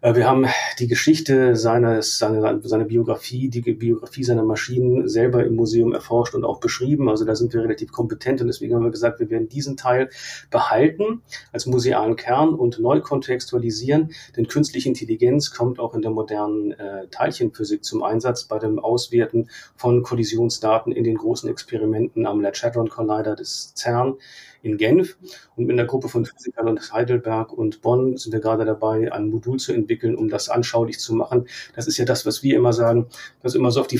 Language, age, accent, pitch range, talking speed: German, 40-59, German, 115-135 Hz, 185 wpm